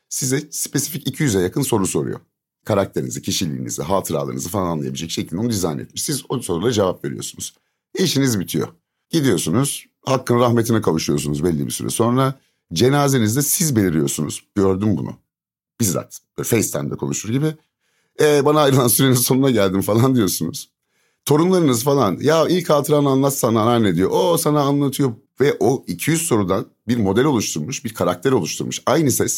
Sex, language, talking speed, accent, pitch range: male, Turkish, 145 wpm, native, 95-135 Hz